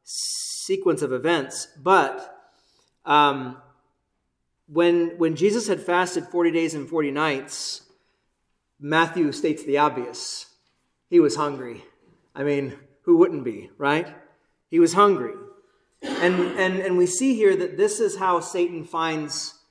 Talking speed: 130 wpm